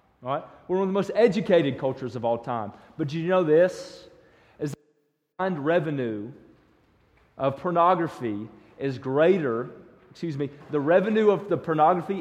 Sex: male